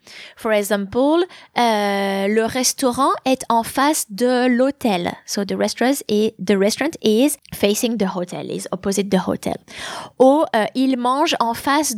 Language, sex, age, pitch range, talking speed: English, female, 20-39, 200-265 Hz, 150 wpm